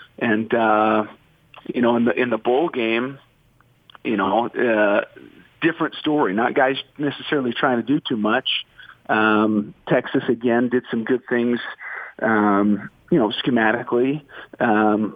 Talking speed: 140 wpm